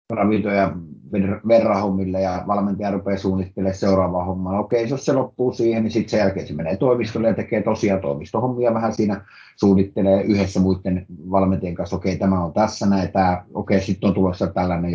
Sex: male